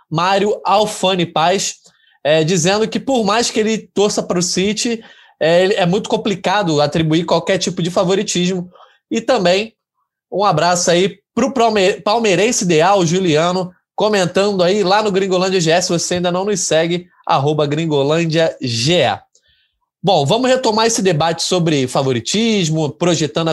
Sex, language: male, Portuguese